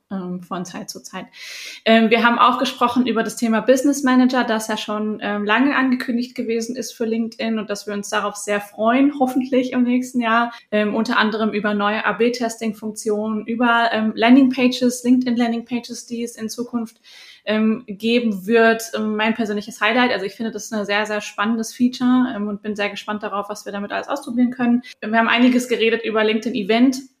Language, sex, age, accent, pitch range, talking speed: German, female, 20-39, German, 210-245 Hz, 170 wpm